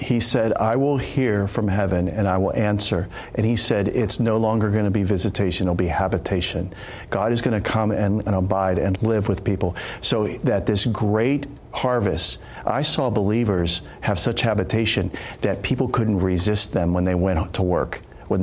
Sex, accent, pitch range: male, American, 95-110 Hz